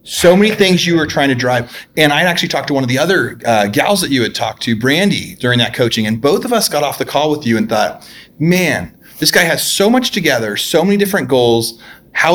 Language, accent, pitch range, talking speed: English, American, 120-155 Hz, 255 wpm